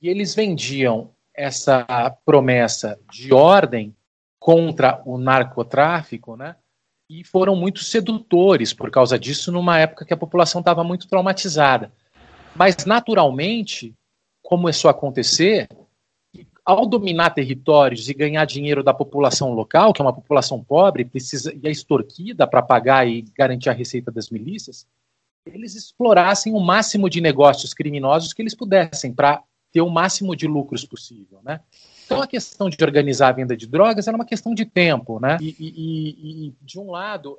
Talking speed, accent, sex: 155 wpm, Brazilian, male